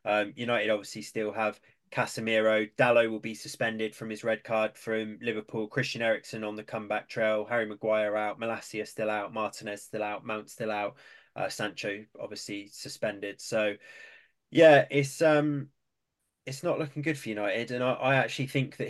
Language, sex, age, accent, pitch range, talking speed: English, male, 20-39, British, 105-125 Hz, 170 wpm